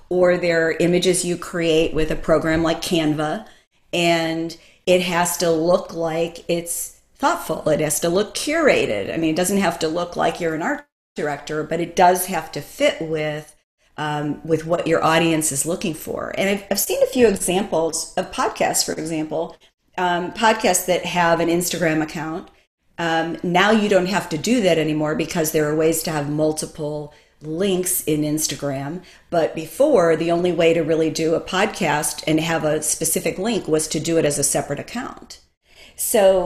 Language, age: English, 40-59